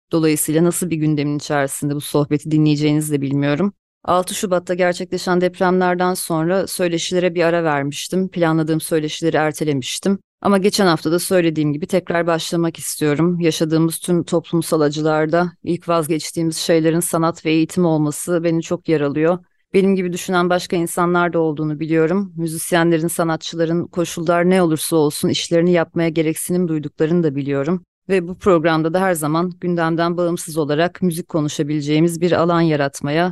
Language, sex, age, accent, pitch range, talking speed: Turkish, female, 30-49, native, 160-180 Hz, 140 wpm